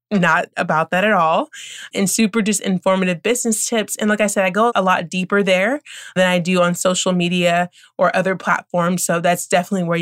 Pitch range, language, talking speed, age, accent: 170-205 Hz, English, 205 wpm, 20-39, American